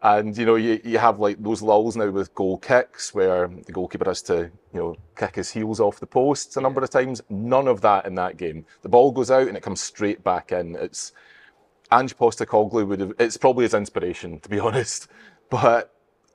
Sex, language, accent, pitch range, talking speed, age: male, English, British, 100-130 Hz, 215 wpm, 30-49